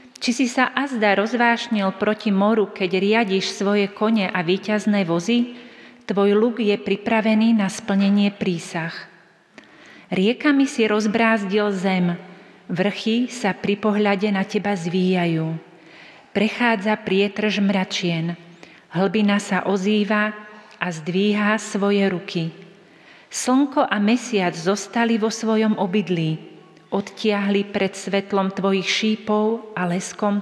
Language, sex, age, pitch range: Slovak, female, 40-59, 190-220 Hz